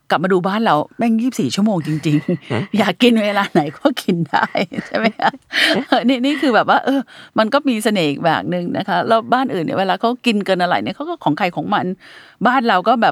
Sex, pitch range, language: female, 165-210 Hz, Thai